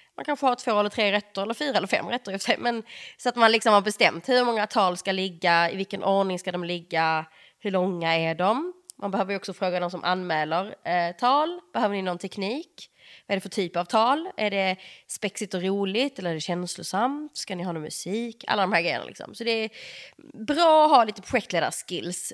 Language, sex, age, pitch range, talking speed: Swedish, female, 20-39, 180-235 Hz, 220 wpm